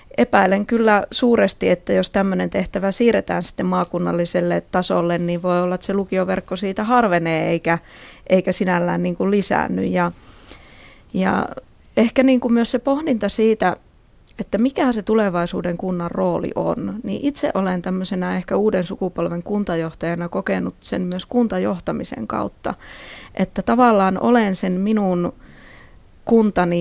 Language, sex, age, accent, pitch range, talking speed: Finnish, female, 20-39, native, 175-210 Hz, 125 wpm